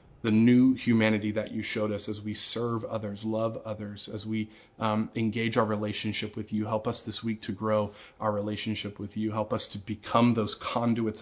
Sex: male